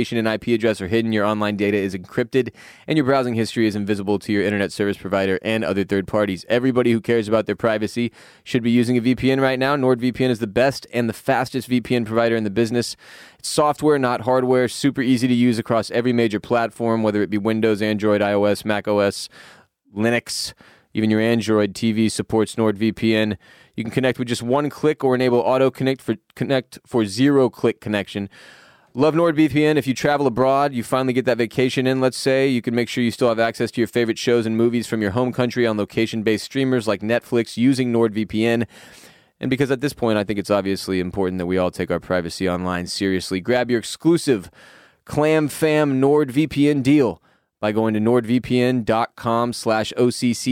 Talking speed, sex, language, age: 190 wpm, male, English, 20-39